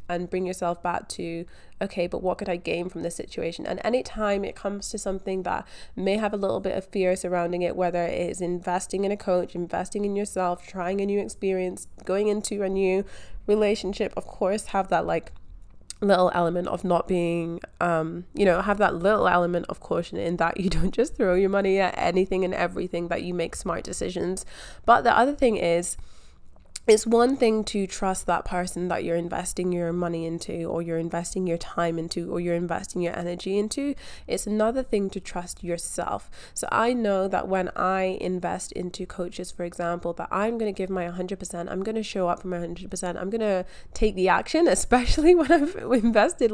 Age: 20-39